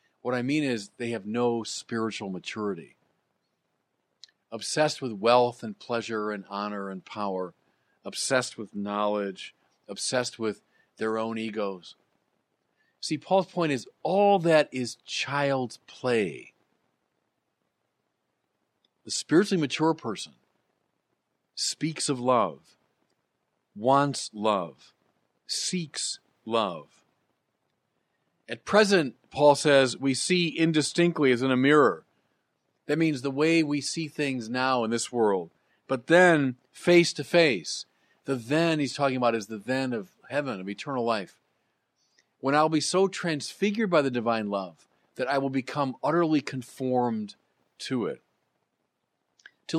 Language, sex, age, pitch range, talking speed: English, male, 50-69, 115-155 Hz, 125 wpm